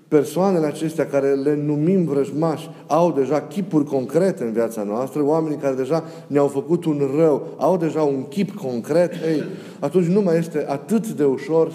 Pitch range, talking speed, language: 140-180 Hz, 170 wpm, Romanian